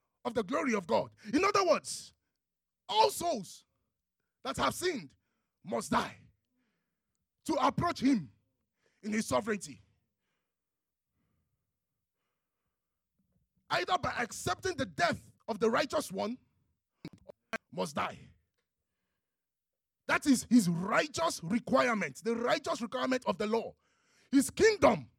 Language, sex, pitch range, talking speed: English, male, 180-295 Hz, 110 wpm